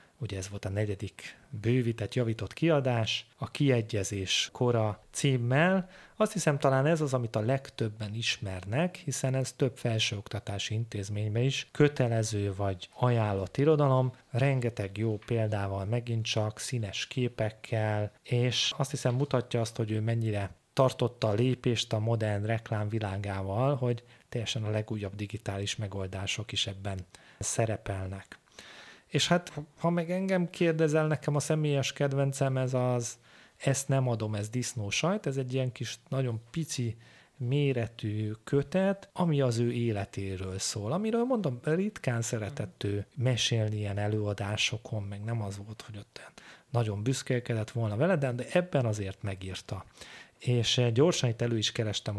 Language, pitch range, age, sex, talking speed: Hungarian, 105-135 Hz, 30-49, male, 140 wpm